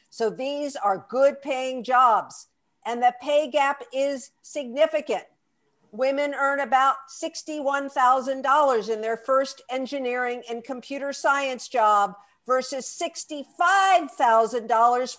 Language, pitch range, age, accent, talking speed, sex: English, 235-310 Hz, 50-69, American, 105 wpm, female